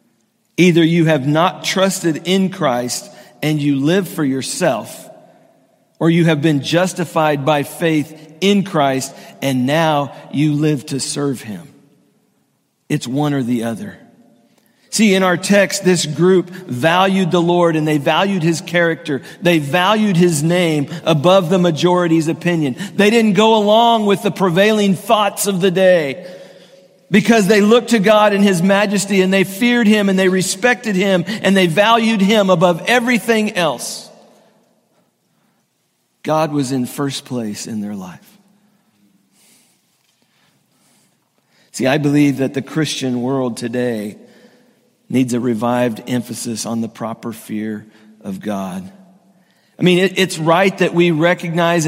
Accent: American